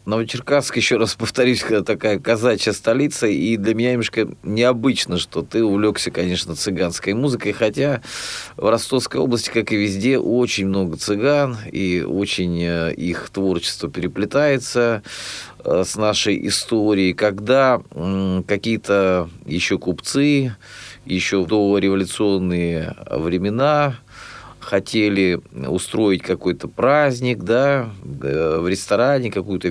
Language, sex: Russian, male